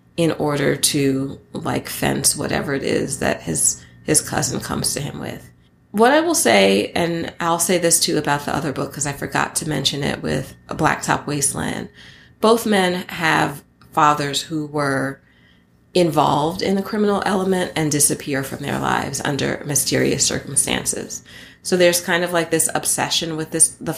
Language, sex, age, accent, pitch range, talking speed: English, female, 30-49, American, 135-175 Hz, 170 wpm